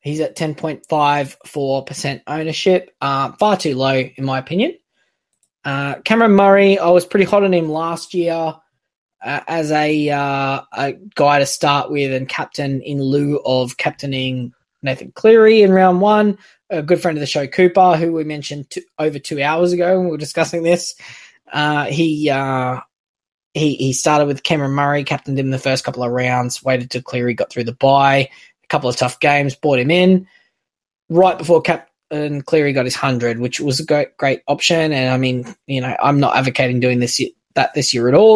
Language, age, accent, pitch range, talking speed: English, 20-39, Australian, 130-175 Hz, 190 wpm